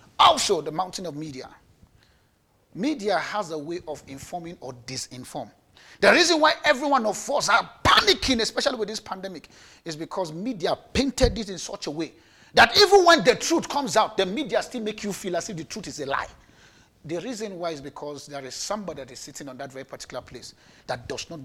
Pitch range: 150-240 Hz